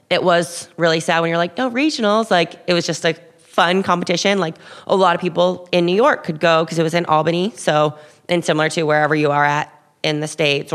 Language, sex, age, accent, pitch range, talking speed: English, female, 20-39, American, 155-175 Hz, 235 wpm